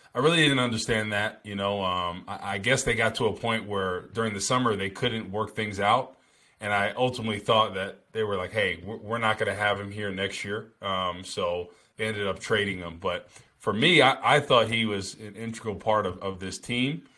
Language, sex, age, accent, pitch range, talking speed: English, male, 20-39, American, 100-120 Hz, 230 wpm